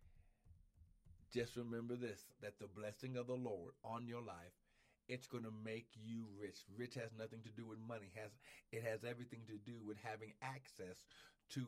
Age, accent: 50-69, American